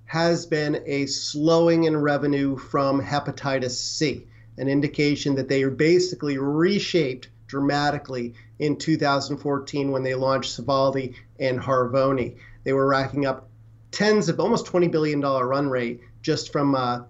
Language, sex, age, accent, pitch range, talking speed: English, male, 40-59, American, 130-155 Hz, 135 wpm